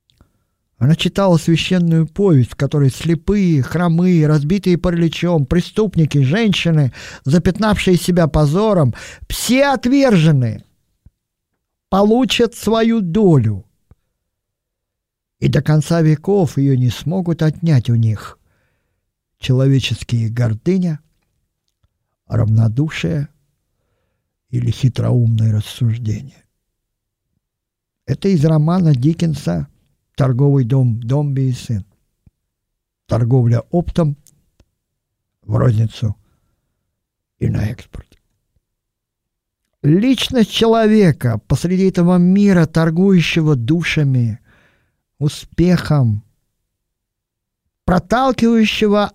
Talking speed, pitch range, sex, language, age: 75 wpm, 115-175 Hz, male, Russian, 50-69